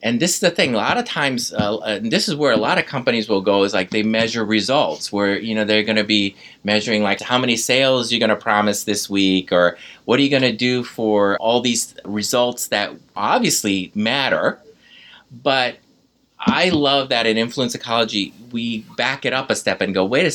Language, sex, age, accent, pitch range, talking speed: English, male, 30-49, American, 100-135 Hz, 215 wpm